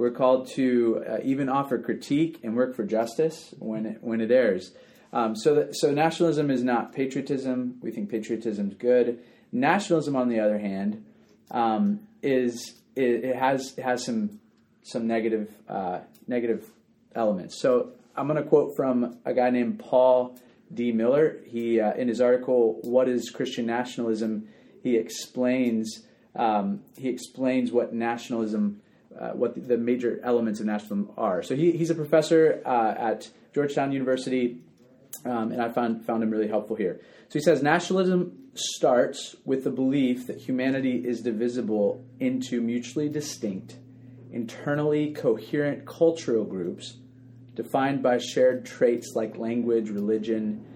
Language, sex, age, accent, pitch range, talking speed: English, male, 30-49, American, 115-140 Hz, 150 wpm